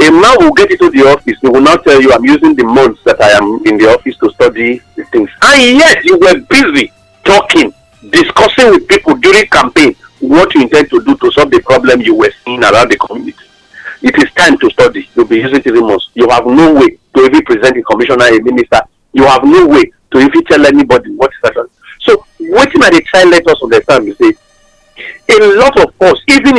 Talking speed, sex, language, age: 225 wpm, male, English, 50-69